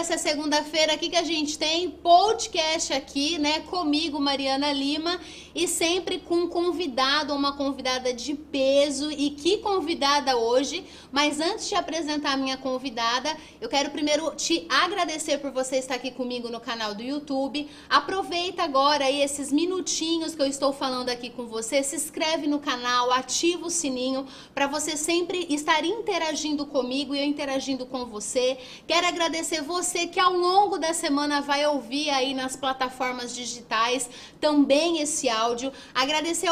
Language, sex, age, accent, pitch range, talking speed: Portuguese, female, 30-49, Brazilian, 265-320 Hz, 160 wpm